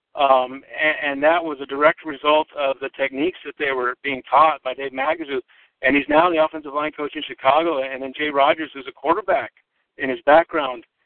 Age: 60-79